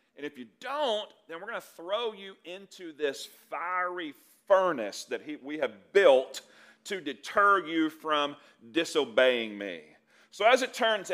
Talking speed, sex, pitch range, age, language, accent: 155 wpm, male, 155-240 Hz, 40-59, English, American